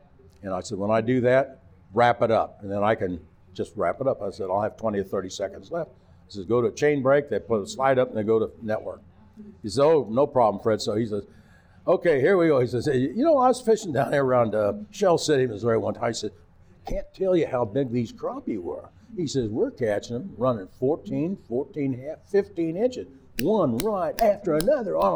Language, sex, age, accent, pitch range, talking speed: English, male, 60-79, American, 105-180 Hz, 240 wpm